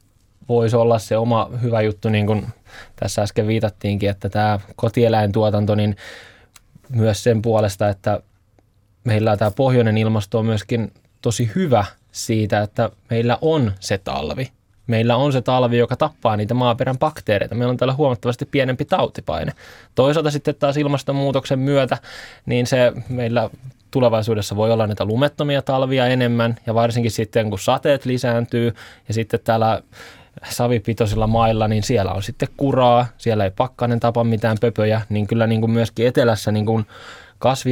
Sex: male